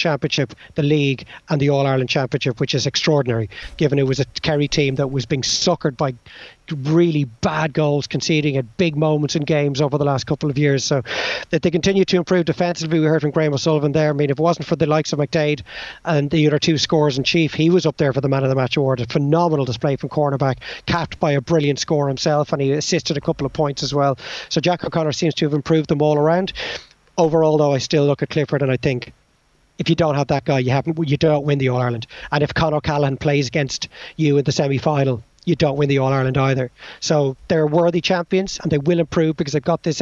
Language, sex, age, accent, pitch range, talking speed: English, male, 30-49, Irish, 140-165 Hz, 240 wpm